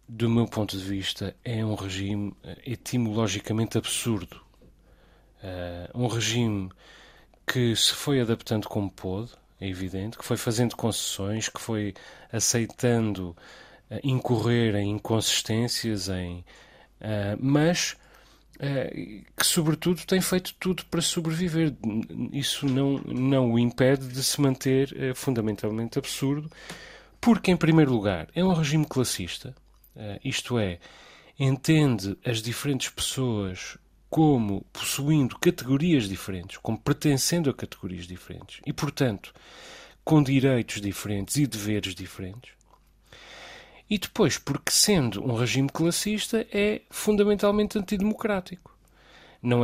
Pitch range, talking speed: 105-145 Hz, 110 wpm